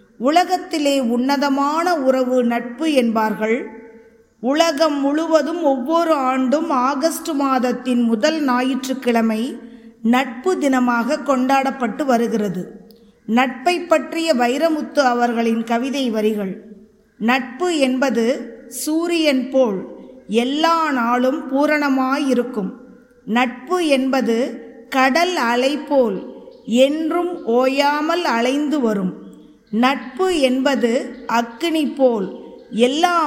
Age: 20-39